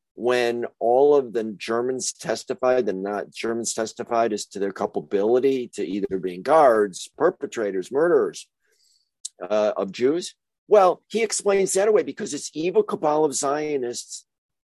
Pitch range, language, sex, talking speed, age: 120-190 Hz, English, male, 140 wpm, 50-69